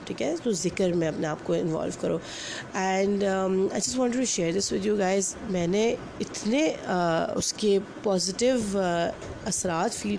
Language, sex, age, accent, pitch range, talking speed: English, female, 30-49, Indian, 185-255 Hz, 110 wpm